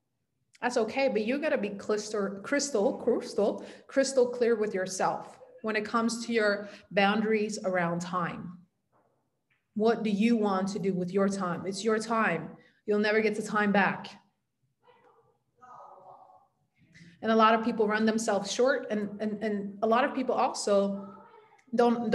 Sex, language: female, English